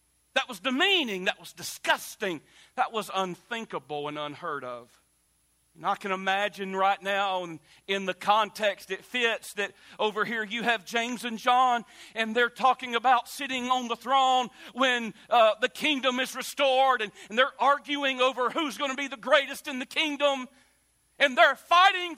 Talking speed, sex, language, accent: 170 wpm, male, English, American